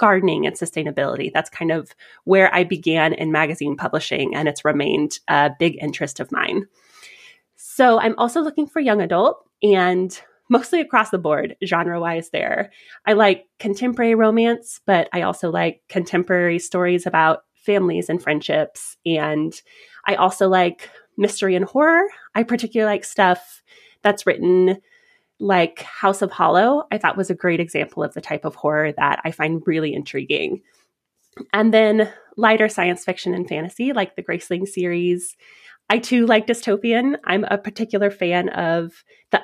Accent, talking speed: American, 155 wpm